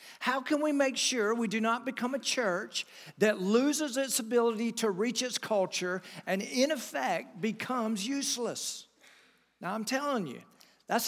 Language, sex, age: English, male, 50-69